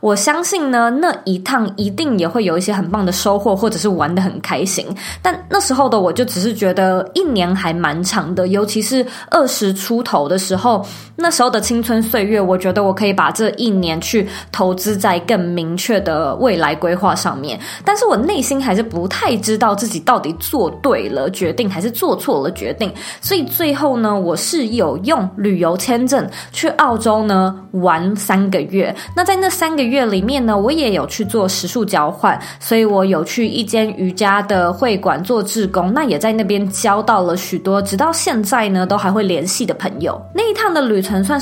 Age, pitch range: 20-39, 185-245 Hz